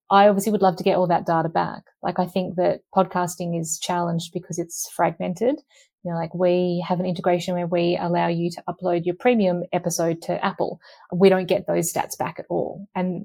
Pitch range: 170-185 Hz